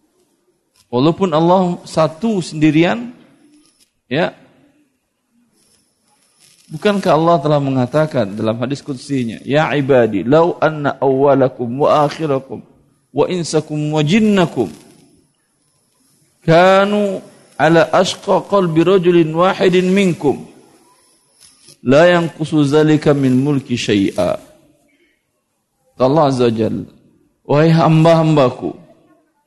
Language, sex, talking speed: Indonesian, male, 75 wpm